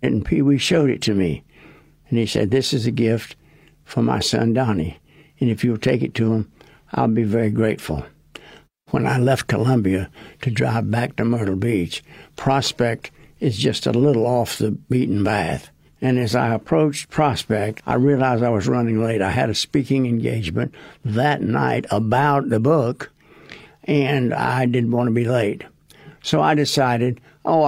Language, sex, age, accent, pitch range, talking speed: English, male, 60-79, American, 90-130 Hz, 175 wpm